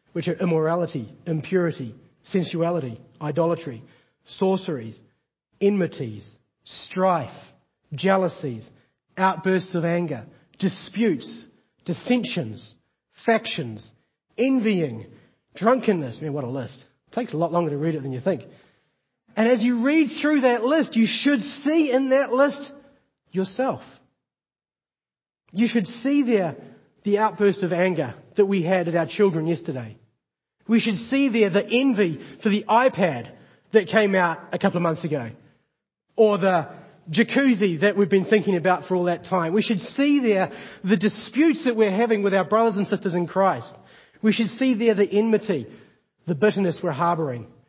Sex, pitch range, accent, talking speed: male, 155-215 Hz, Australian, 145 wpm